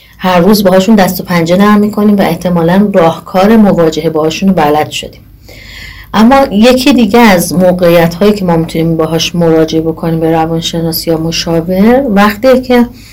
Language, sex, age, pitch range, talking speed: Persian, female, 30-49, 165-205 Hz, 155 wpm